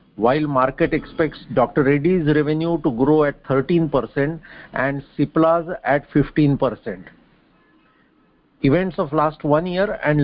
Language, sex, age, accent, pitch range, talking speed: English, male, 50-69, Indian, 140-165 Hz, 115 wpm